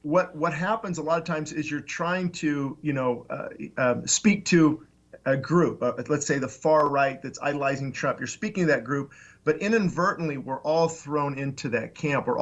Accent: American